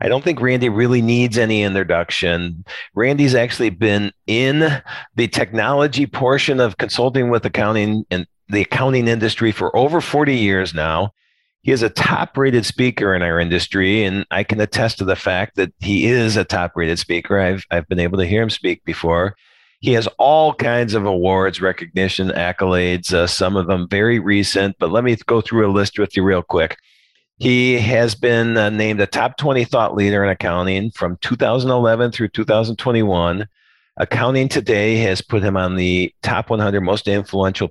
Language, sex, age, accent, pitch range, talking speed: English, male, 50-69, American, 95-120 Hz, 175 wpm